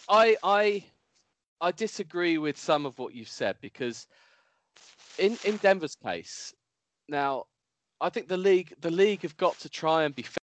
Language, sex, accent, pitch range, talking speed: English, male, British, 105-155 Hz, 165 wpm